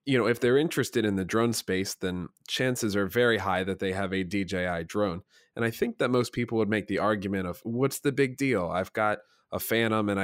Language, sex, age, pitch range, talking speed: English, male, 20-39, 95-115 Hz, 235 wpm